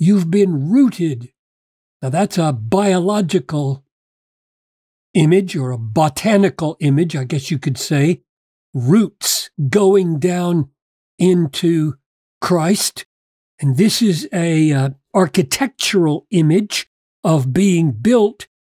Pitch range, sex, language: 145-200 Hz, male, English